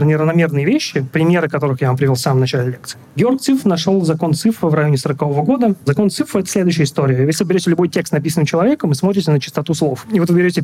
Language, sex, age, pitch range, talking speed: Russian, male, 30-49, 140-180 Hz, 230 wpm